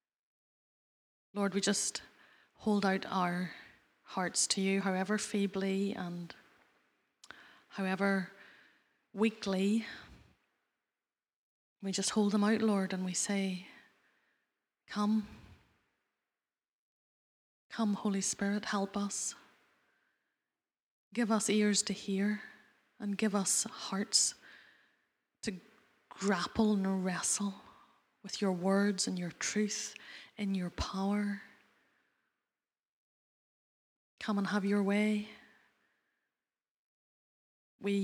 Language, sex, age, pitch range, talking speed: English, female, 30-49, 190-210 Hz, 90 wpm